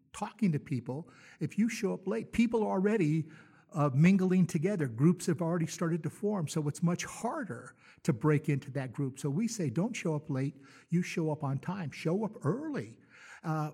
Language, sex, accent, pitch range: English, male, American, 145-175 Hz